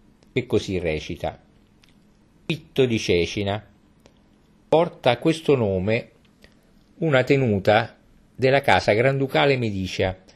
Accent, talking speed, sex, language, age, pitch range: native, 95 wpm, male, Italian, 50-69, 100-140 Hz